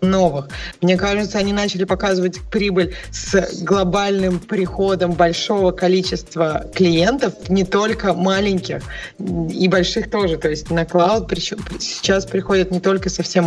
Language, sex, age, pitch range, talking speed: Russian, female, 20-39, 170-195 Hz, 125 wpm